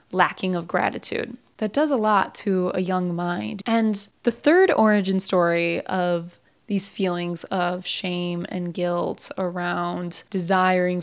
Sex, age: female, 20-39